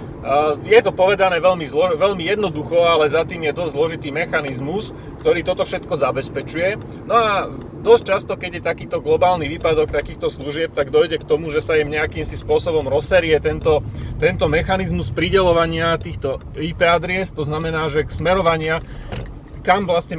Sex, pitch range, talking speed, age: male, 150-190 Hz, 160 wpm, 30-49